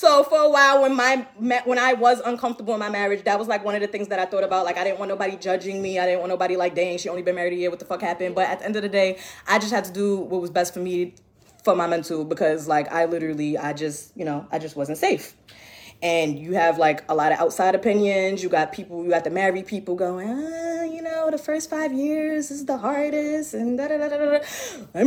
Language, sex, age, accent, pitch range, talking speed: English, female, 20-39, American, 180-250 Hz, 260 wpm